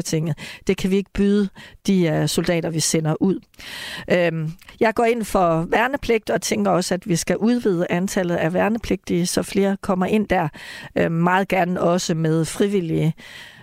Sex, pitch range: female, 175-200 Hz